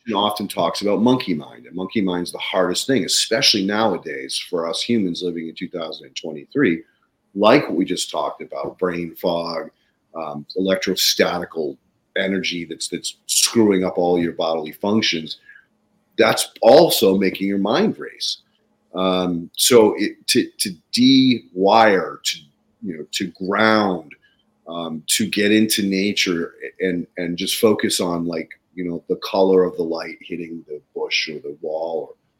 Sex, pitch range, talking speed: male, 85-110 Hz, 150 wpm